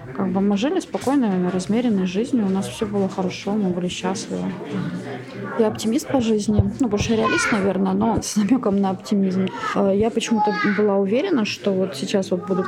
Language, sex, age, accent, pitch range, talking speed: Ukrainian, female, 20-39, native, 185-220 Hz, 160 wpm